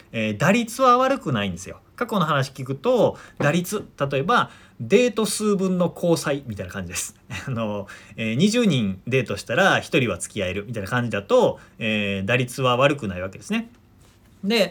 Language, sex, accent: Japanese, male, native